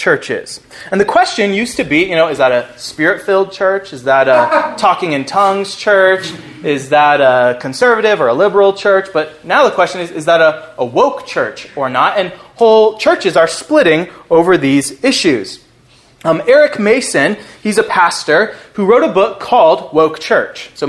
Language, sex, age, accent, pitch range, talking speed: English, male, 20-39, American, 155-225 Hz, 185 wpm